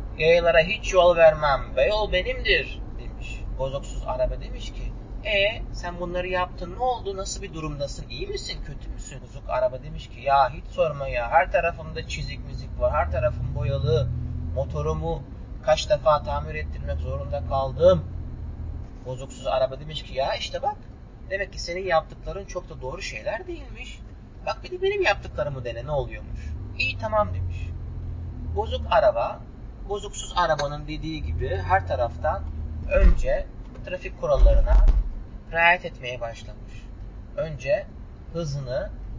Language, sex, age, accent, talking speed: Turkish, male, 30-49, native, 140 wpm